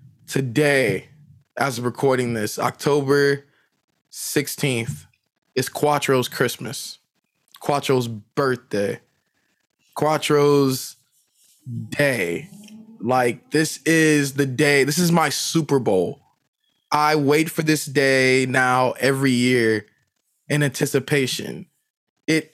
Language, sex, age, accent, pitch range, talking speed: English, male, 20-39, American, 125-150 Hz, 95 wpm